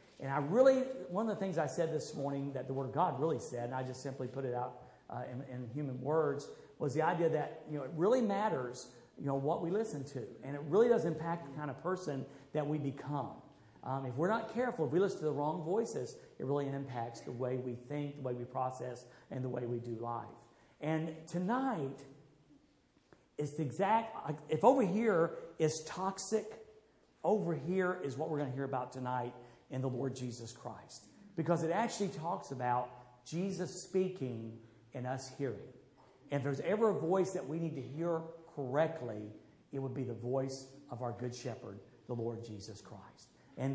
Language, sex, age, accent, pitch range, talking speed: English, male, 50-69, American, 130-185 Hz, 200 wpm